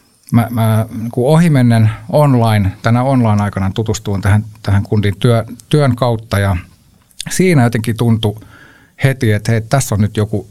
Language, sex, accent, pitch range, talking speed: Finnish, male, native, 105-120 Hz, 155 wpm